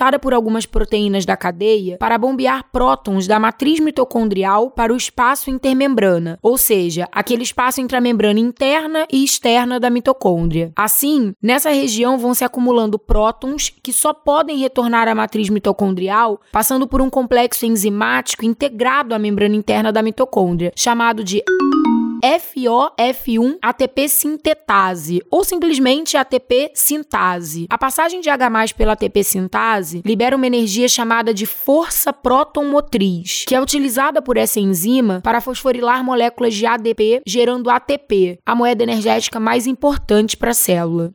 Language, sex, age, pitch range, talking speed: Portuguese, female, 20-39, 215-270 Hz, 135 wpm